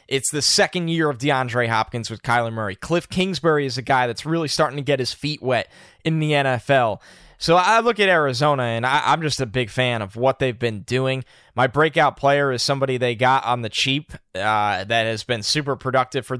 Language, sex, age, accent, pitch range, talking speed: English, male, 10-29, American, 120-150 Hz, 215 wpm